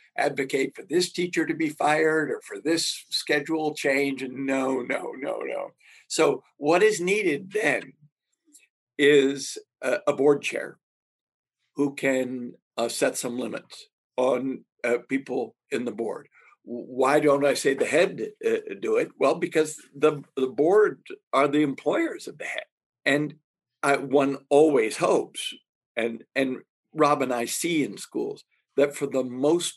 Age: 60-79